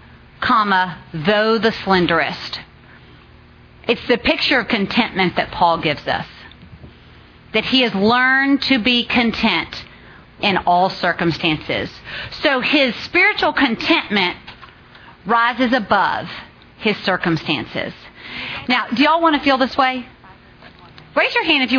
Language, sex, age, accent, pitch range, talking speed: English, female, 40-59, American, 210-275 Hz, 125 wpm